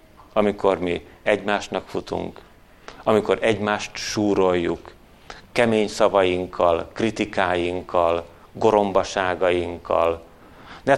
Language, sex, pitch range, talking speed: Hungarian, male, 85-115 Hz, 65 wpm